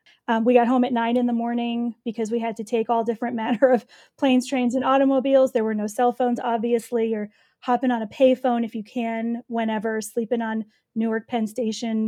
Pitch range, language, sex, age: 225-265 Hz, English, female, 30-49